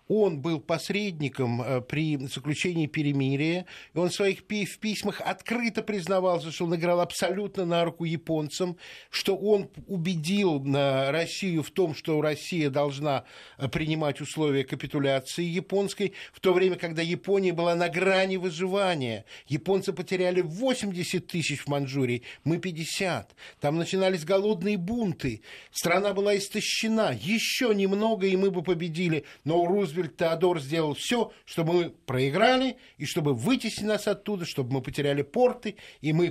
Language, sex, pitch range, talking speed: Russian, male, 140-190 Hz, 140 wpm